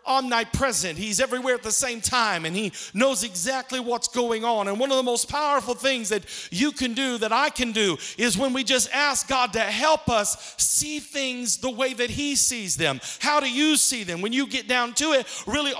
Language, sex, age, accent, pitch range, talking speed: English, male, 40-59, American, 235-290 Hz, 220 wpm